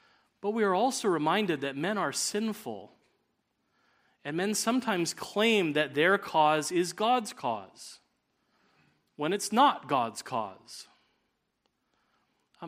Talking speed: 120 wpm